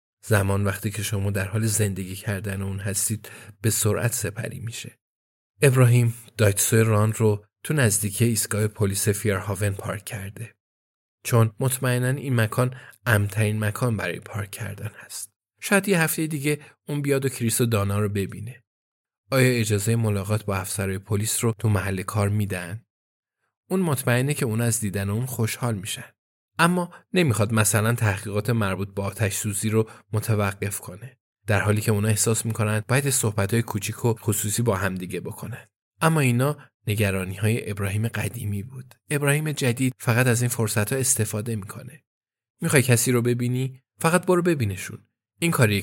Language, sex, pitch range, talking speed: Persian, male, 105-125 Hz, 150 wpm